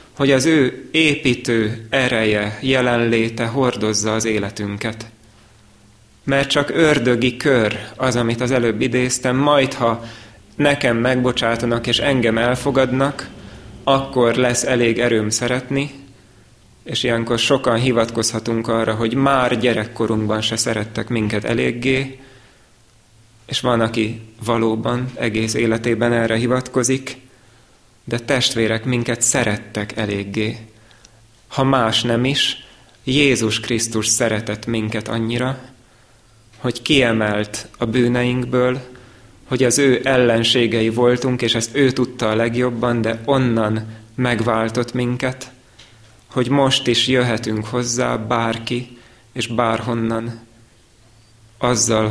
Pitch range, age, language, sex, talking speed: 110-125 Hz, 30-49, Hungarian, male, 105 wpm